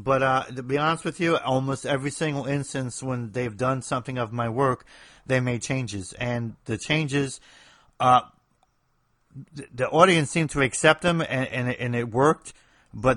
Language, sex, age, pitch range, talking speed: English, male, 30-49, 115-140 Hz, 165 wpm